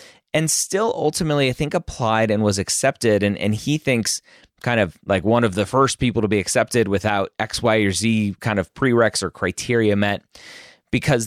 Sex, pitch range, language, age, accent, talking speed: male, 95-125 Hz, English, 30-49, American, 190 wpm